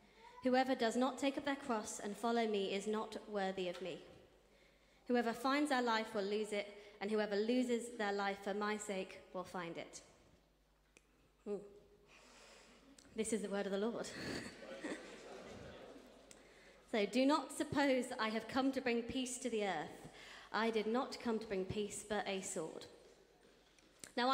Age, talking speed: 30-49, 160 wpm